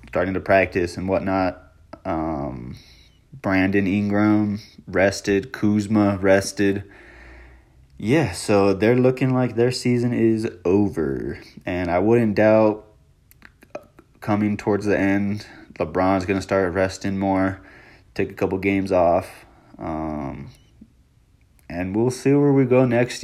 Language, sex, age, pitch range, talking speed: English, male, 20-39, 95-110 Hz, 120 wpm